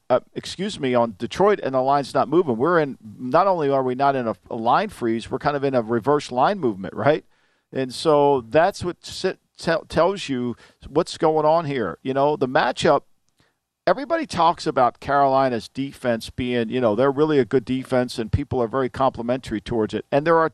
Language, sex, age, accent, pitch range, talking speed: English, male, 50-69, American, 120-155 Hz, 200 wpm